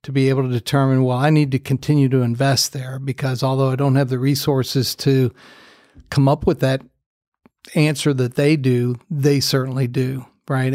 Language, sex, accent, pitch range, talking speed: English, male, American, 130-145 Hz, 185 wpm